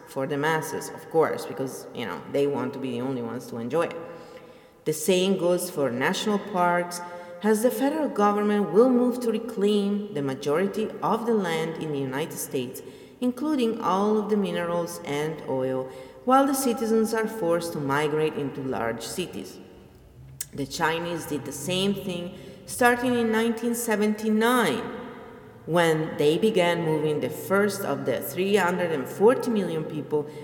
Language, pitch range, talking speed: English, 150-220 Hz, 155 wpm